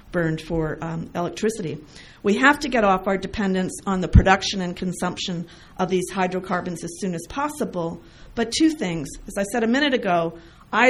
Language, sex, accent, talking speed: English, female, American, 180 wpm